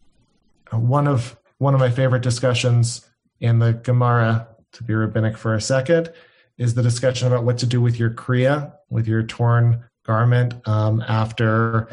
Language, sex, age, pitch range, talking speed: English, male, 30-49, 115-130 Hz, 160 wpm